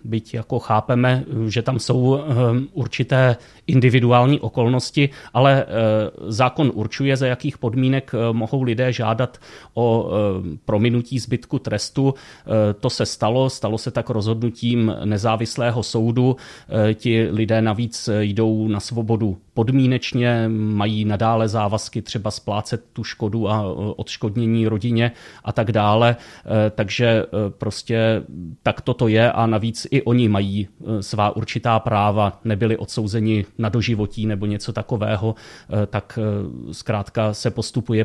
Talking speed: 120 wpm